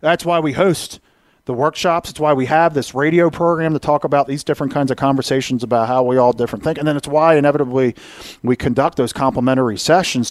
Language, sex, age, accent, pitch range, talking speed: English, male, 40-59, American, 120-150 Hz, 215 wpm